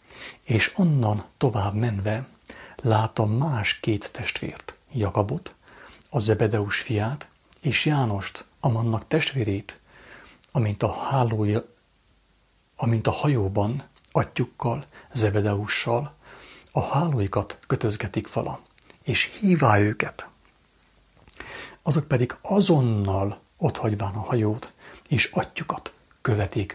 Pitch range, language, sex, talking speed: 105-135 Hz, English, male, 85 wpm